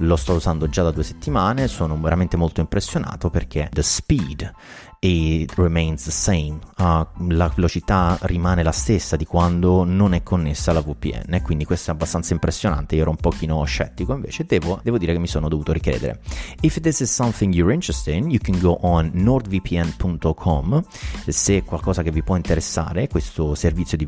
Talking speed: 180 wpm